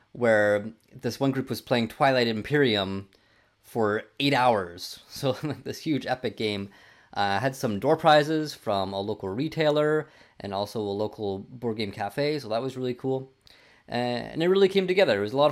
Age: 20-39